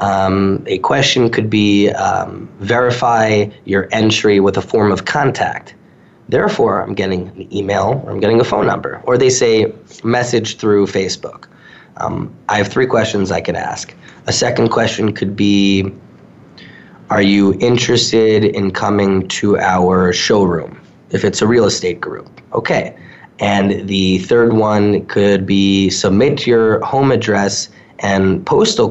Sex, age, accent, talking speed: male, 20-39, American, 145 wpm